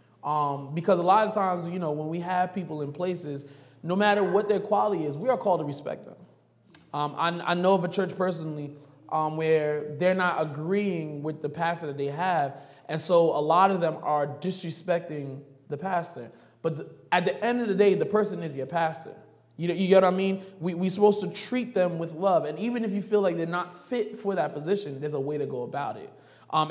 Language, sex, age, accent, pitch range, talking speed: English, male, 20-39, American, 150-190 Hz, 220 wpm